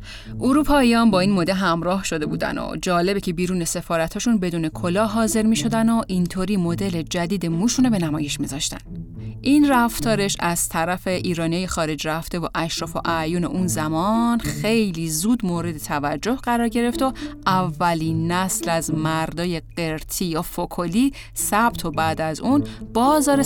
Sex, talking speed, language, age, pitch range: female, 155 wpm, Persian, 10-29, 160-225 Hz